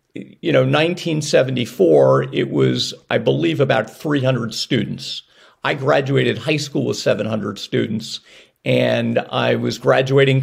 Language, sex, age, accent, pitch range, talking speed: English, male, 50-69, American, 110-145 Hz, 120 wpm